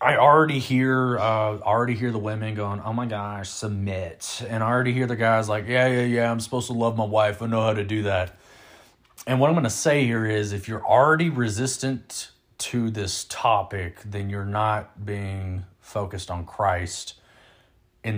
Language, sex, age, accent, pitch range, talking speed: English, male, 30-49, American, 100-120 Hz, 195 wpm